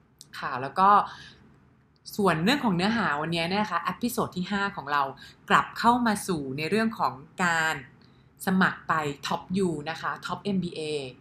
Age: 20-39